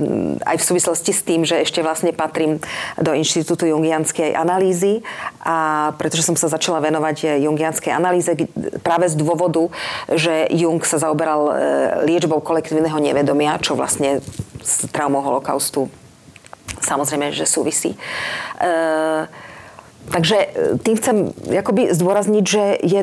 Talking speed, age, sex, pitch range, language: 120 wpm, 40-59, female, 155-185 Hz, Slovak